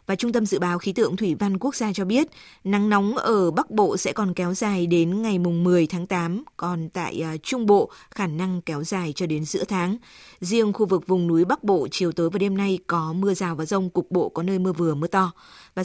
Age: 20-39